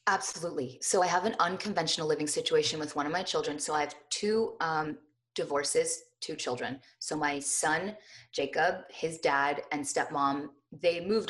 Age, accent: 20-39, American